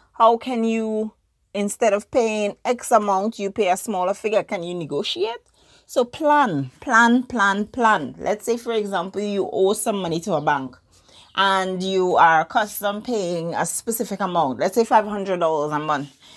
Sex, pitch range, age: female, 170-230 Hz, 30-49